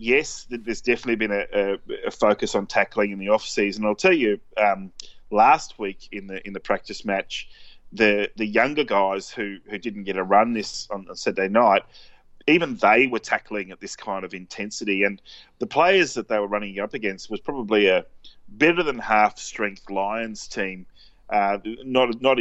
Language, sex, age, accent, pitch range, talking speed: English, male, 30-49, Australian, 100-115 Hz, 185 wpm